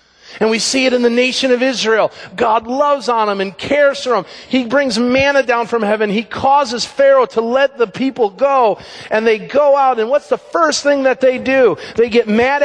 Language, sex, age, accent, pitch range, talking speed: English, male, 40-59, American, 180-250 Hz, 220 wpm